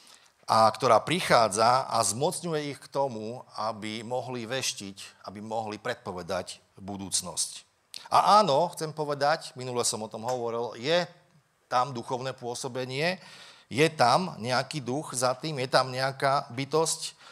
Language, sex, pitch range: Slovak, male, 115-160 Hz